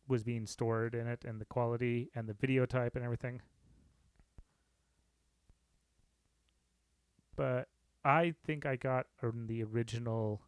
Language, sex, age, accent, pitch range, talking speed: English, male, 30-49, American, 105-125 Hz, 120 wpm